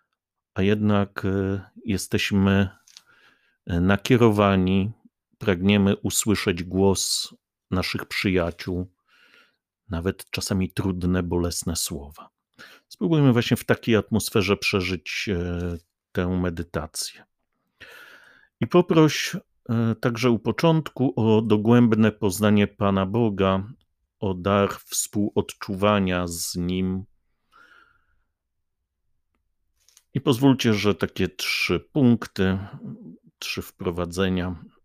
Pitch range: 90-110 Hz